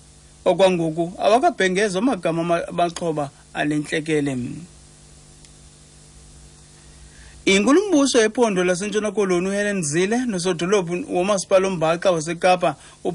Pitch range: 155-190 Hz